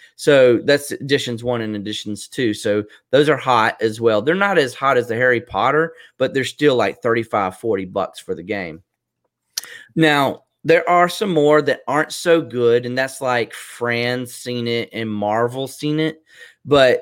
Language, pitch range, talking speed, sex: English, 110-150 Hz, 180 wpm, male